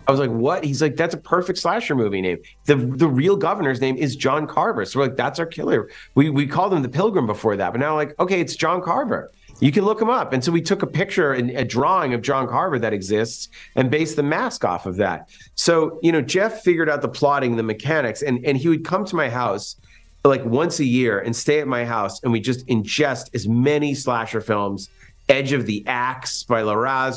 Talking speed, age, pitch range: 240 wpm, 40-59, 120-150 Hz